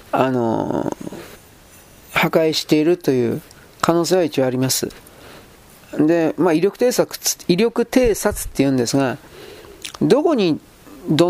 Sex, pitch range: male, 125-165 Hz